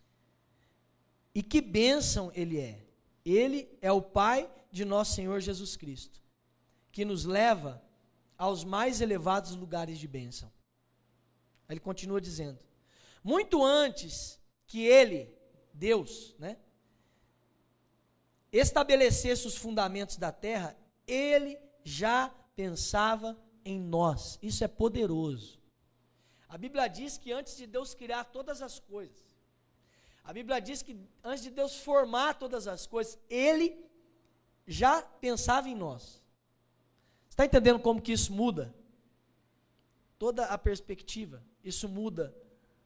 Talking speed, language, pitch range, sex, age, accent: 115 wpm, Portuguese, 165-255 Hz, male, 20-39, Brazilian